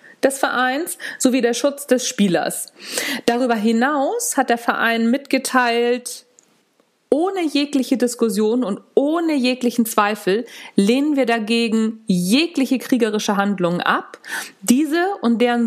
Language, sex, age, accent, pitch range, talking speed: German, female, 40-59, German, 215-270 Hz, 115 wpm